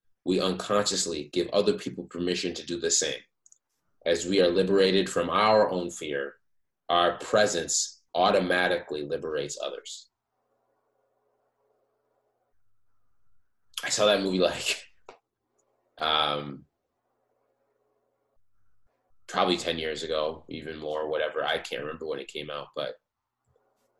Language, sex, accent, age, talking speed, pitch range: English, male, American, 20-39, 110 wpm, 85-100 Hz